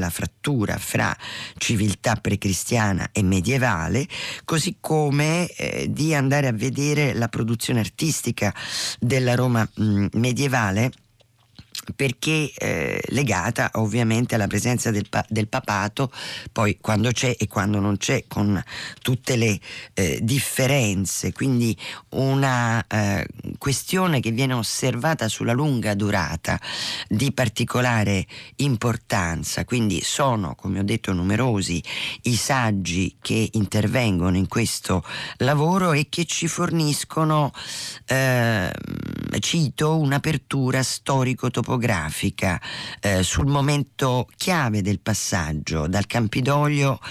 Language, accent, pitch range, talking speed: Italian, native, 100-130 Hz, 105 wpm